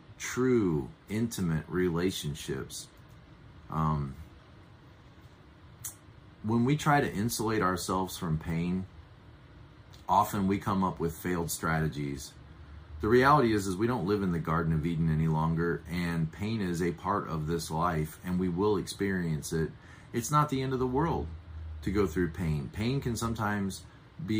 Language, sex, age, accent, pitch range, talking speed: English, male, 40-59, American, 85-120 Hz, 150 wpm